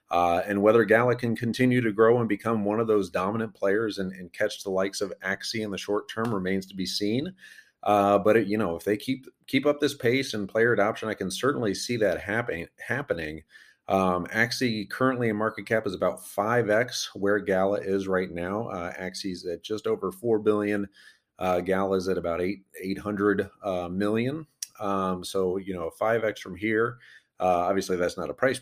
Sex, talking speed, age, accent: male, 200 wpm, 30-49, American